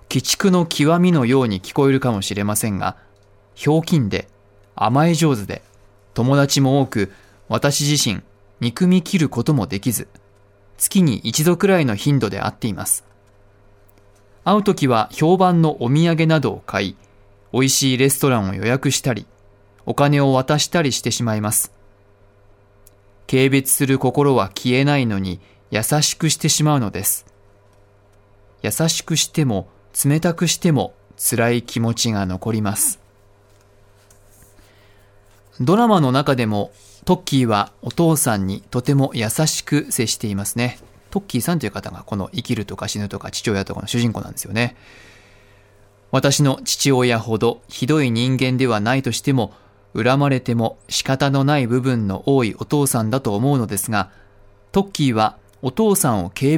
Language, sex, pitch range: Japanese, male, 100-140 Hz